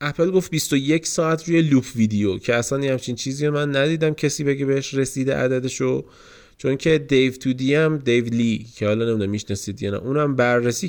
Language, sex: Persian, male